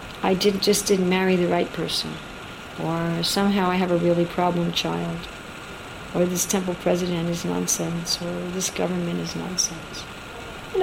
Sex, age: female, 60-79